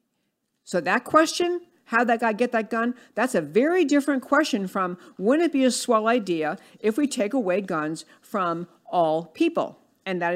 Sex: female